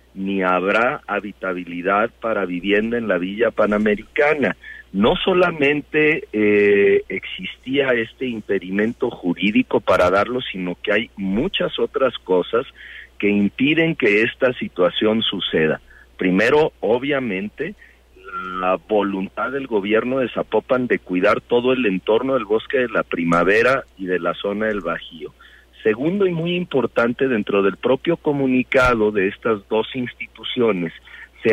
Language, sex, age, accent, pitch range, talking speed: Spanish, male, 50-69, Mexican, 95-130 Hz, 130 wpm